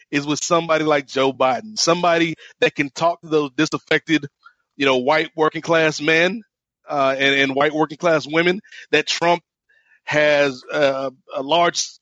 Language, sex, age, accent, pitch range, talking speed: English, male, 30-49, American, 145-170 Hz, 160 wpm